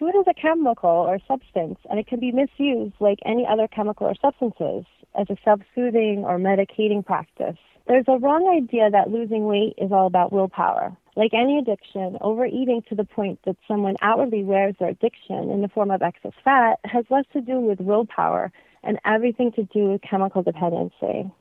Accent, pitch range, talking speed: American, 200-250 Hz, 185 wpm